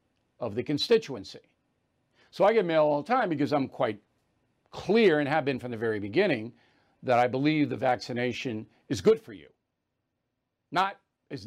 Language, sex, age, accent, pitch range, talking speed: English, male, 60-79, American, 130-190 Hz, 170 wpm